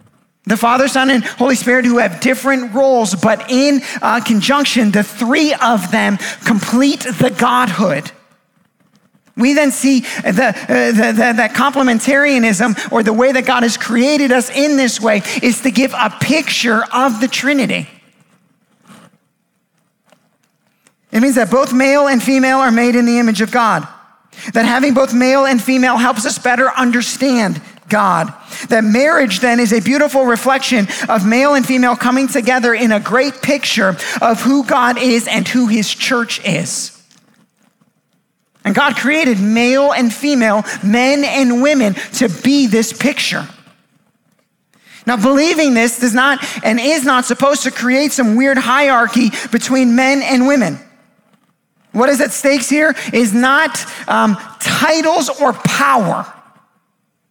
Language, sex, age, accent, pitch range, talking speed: English, male, 40-59, American, 225-270 Hz, 145 wpm